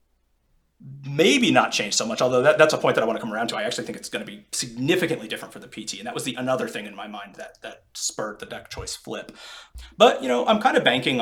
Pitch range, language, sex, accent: 115-155 Hz, English, male, American